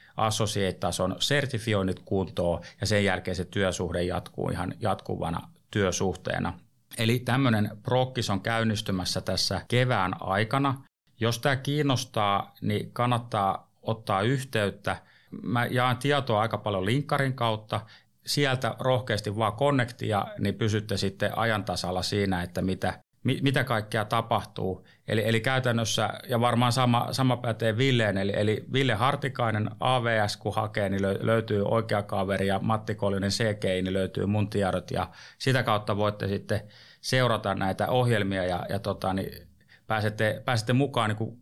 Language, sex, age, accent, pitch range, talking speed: Finnish, male, 30-49, native, 100-120 Hz, 135 wpm